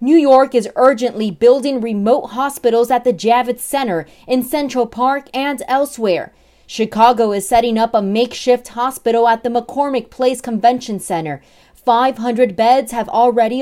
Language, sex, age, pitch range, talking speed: English, female, 20-39, 210-255 Hz, 145 wpm